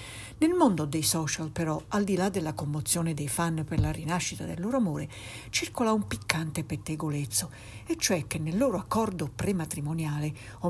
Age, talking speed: 60-79, 170 wpm